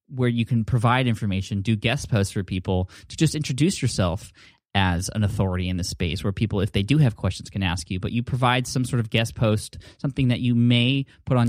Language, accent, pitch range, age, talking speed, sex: English, American, 100-125 Hz, 10-29, 230 wpm, male